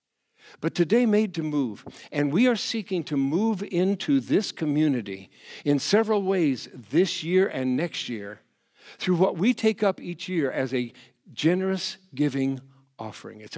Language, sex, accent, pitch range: English, male, American, 120-165 Hz